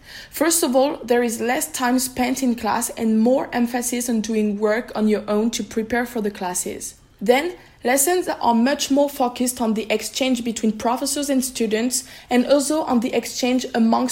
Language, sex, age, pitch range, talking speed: English, female, 20-39, 220-260 Hz, 185 wpm